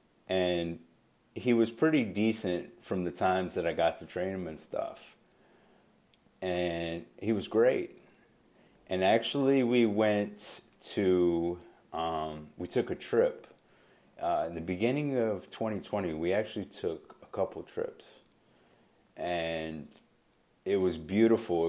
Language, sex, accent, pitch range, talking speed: English, male, American, 90-115 Hz, 125 wpm